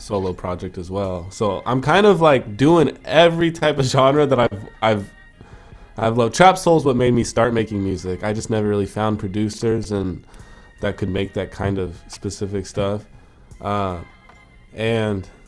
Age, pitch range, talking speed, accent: 20-39, 100-125 Hz, 175 wpm, American